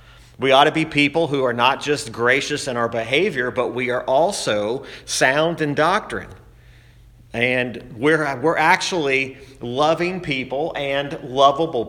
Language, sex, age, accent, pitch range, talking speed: English, male, 40-59, American, 115-140 Hz, 140 wpm